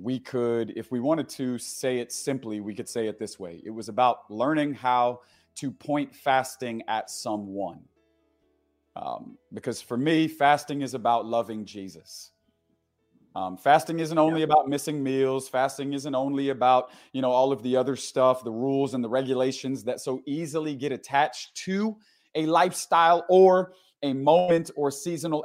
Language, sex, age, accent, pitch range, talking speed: English, male, 30-49, American, 130-165 Hz, 165 wpm